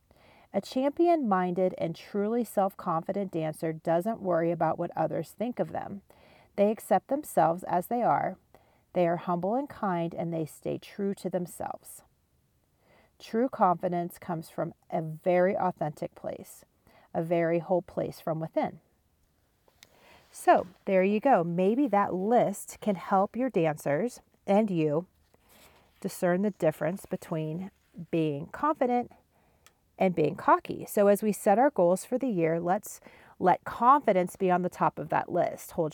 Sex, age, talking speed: female, 40-59, 145 wpm